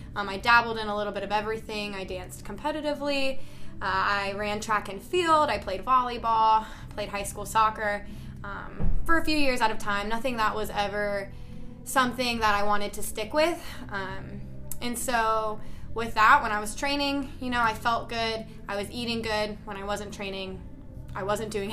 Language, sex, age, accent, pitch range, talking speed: English, female, 20-39, American, 205-250 Hz, 190 wpm